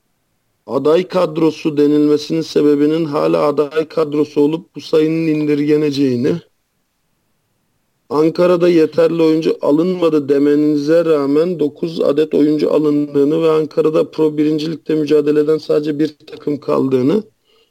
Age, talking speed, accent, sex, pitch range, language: 50-69, 100 wpm, native, male, 145-160 Hz, Turkish